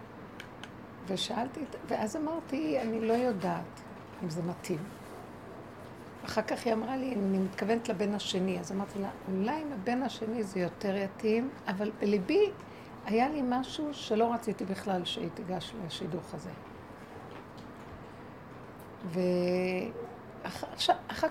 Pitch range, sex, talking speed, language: 195-255 Hz, female, 115 wpm, Hebrew